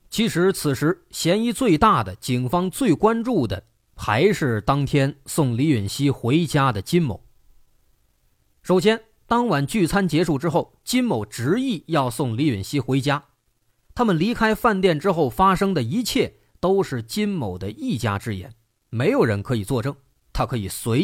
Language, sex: Chinese, male